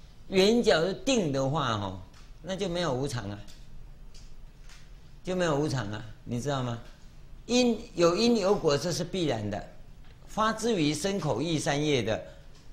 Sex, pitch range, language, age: male, 130-170 Hz, Chinese, 60-79